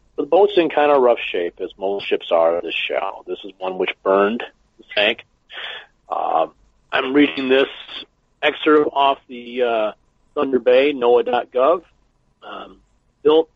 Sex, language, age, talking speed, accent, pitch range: male, English, 40-59, 150 wpm, American, 115-150 Hz